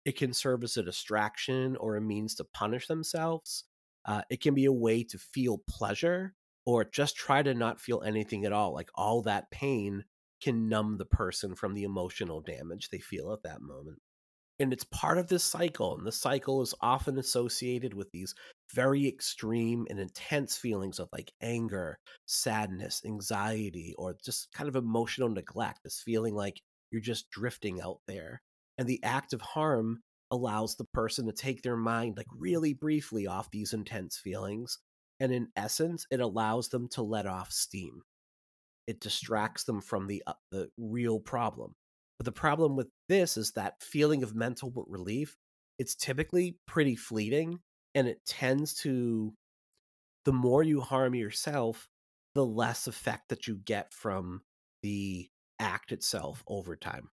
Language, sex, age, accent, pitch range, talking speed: English, male, 30-49, American, 105-135 Hz, 165 wpm